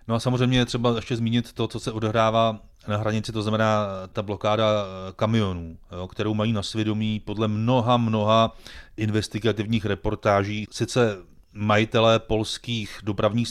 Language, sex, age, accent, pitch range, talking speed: Czech, male, 30-49, native, 95-110 Hz, 140 wpm